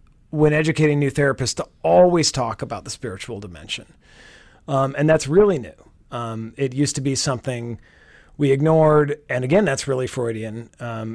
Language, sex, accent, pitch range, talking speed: English, male, American, 120-150 Hz, 160 wpm